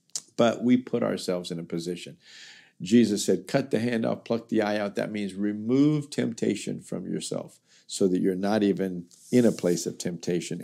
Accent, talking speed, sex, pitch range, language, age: American, 185 wpm, male, 95-115 Hz, English, 50-69